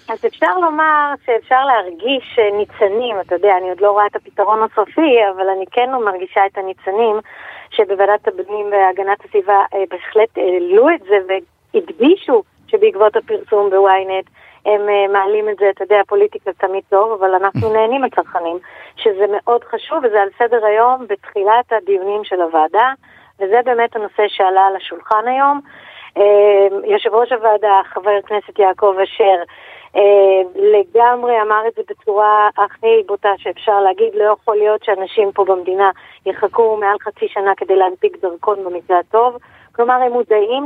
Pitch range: 195-245 Hz